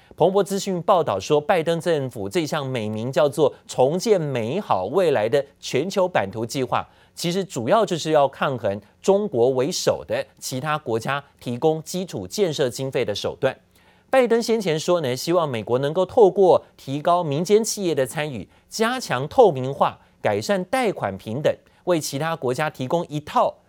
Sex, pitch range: male, 130-185 Hz